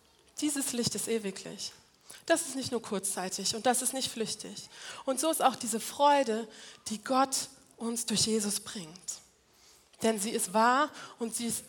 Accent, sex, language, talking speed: German, female, German, 170 wpm